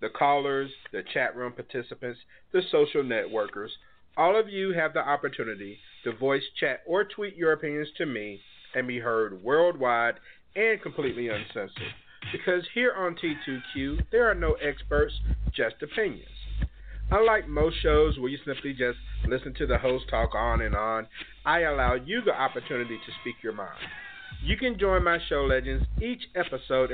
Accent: American